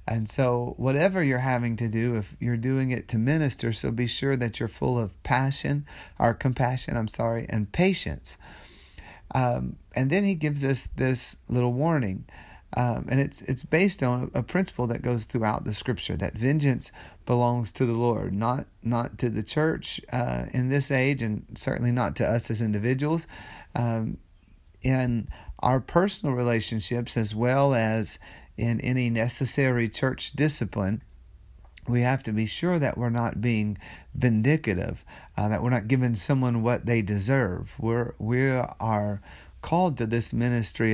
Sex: male